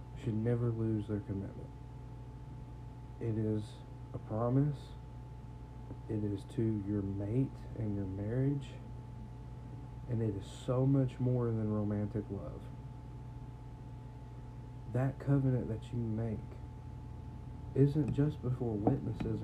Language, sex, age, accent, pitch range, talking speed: English, male, 40-59, American, 110-125 Hz, 110 wpm